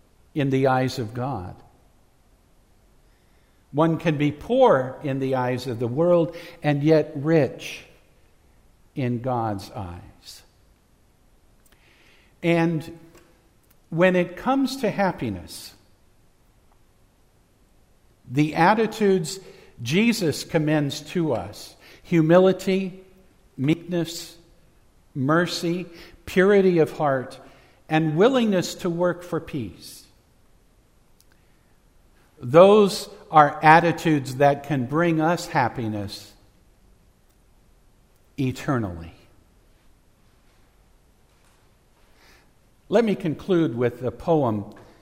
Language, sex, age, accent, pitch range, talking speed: English, male, 60-79, American, 105-170 Hz, 80 wpm